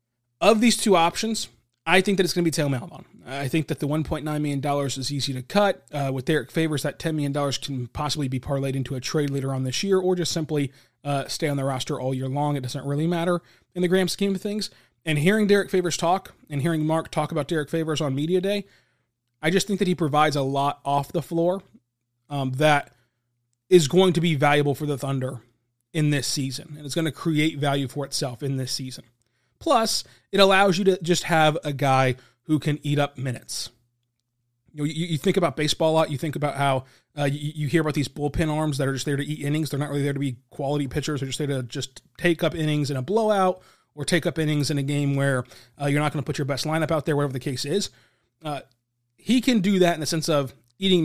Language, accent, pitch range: English, American, 135-165 Hz